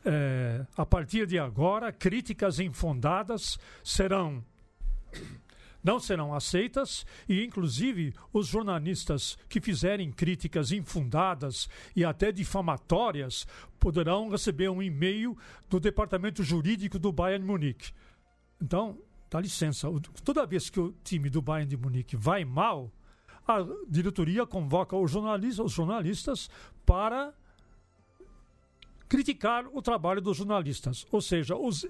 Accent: Brazilian